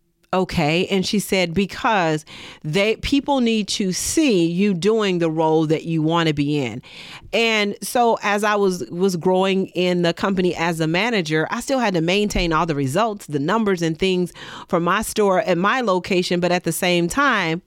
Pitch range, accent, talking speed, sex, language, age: 160-205 Hz, American, 190 wpm, female, English, 40-59